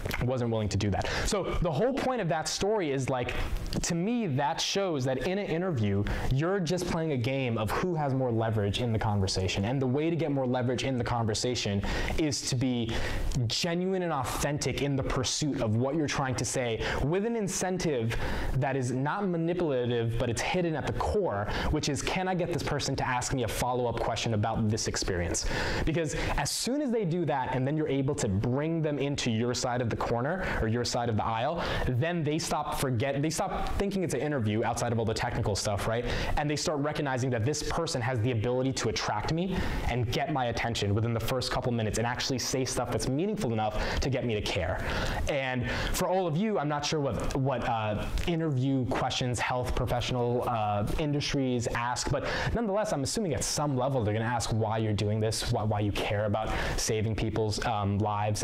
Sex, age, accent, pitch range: male, 20-39, American, 110-150 Hz